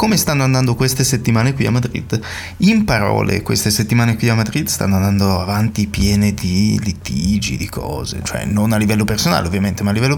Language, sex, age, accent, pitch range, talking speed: Italian, male, 20-39, native, 100-135 Hz, 190 wpm